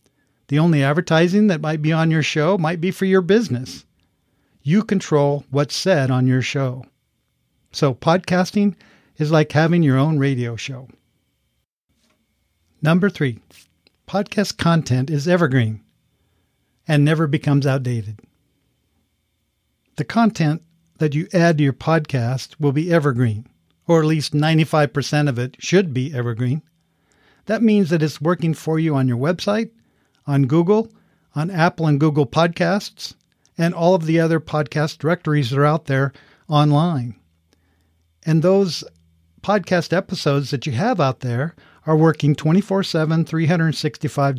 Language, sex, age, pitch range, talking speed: English, male, 50-69, 130-165 Hz, 140 wpm